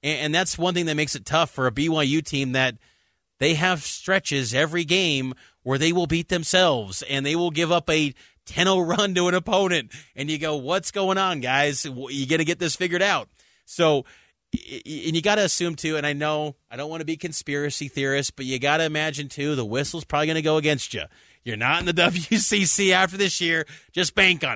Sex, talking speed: male, 220 wpm